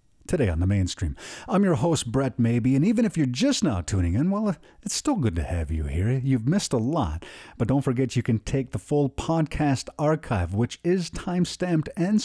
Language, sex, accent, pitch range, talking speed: English, male, American, 105-155 Hz, 210 wpm